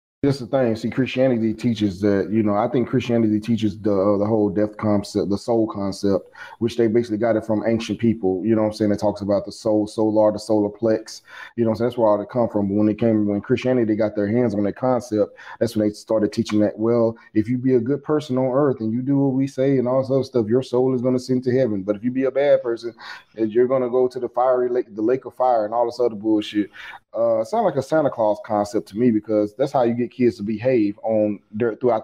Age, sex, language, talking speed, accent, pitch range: 20-39, male, English, 270 wpm, American, 110-135 Hz